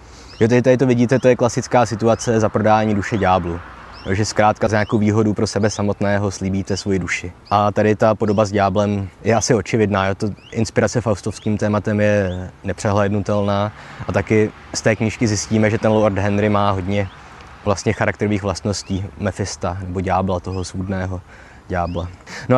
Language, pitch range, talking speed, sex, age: Czech, 100-115 Hz, 160 wpm, male, 20-39